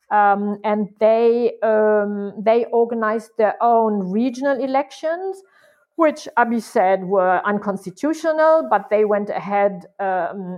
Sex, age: female, 50-69